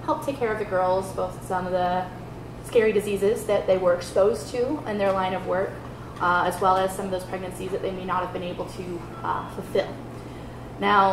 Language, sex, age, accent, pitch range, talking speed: English, female, 10-29, American, 185-220 Hz, 220 wpm